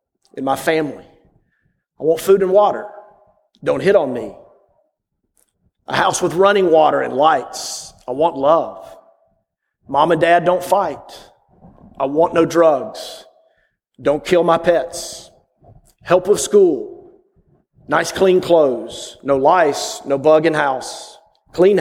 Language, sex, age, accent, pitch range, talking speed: English, male, 40-59, American, 160-190 Hz, 130 wpm